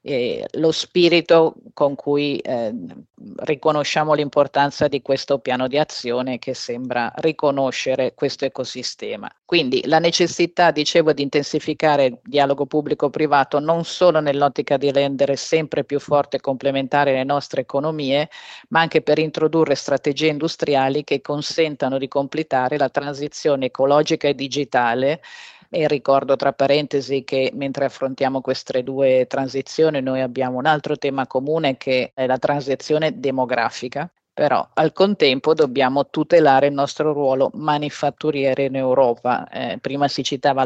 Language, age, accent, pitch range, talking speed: Italian, 40-59, native, 130-150 Hz, 135 wpm